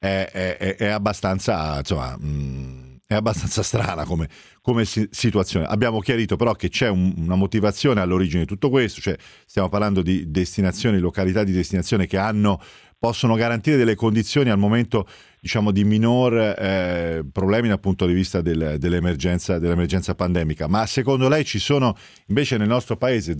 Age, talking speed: 40-59, 155 wpm